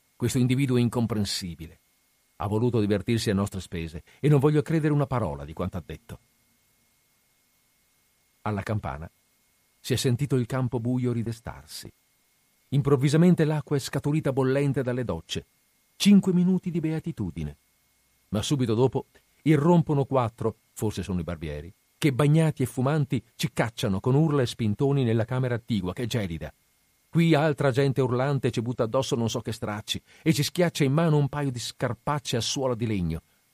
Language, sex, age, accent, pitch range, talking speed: Italian, male, 50-69, native, 100-140 Hz, 160 wpm